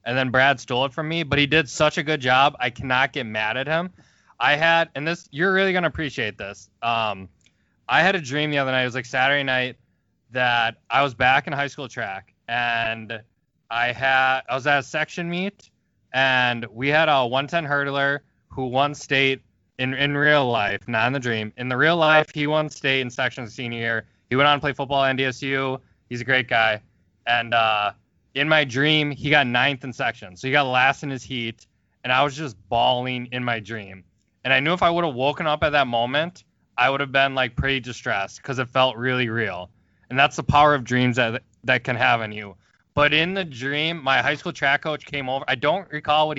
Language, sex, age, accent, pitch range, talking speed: English, male, 20-39, American, 120-150 Hz, 225 wpm